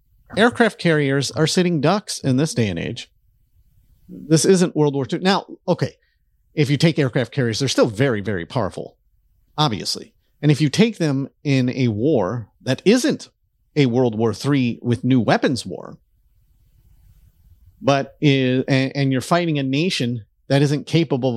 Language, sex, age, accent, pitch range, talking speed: English, male, 40-59, American, 115-160 Hz, 155 wpm